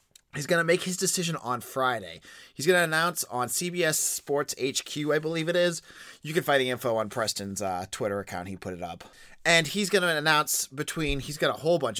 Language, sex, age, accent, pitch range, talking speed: English, male, 30-49, American, 110-160 Hz, 225 wpm